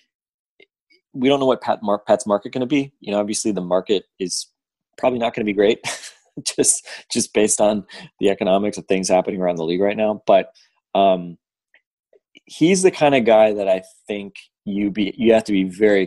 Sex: male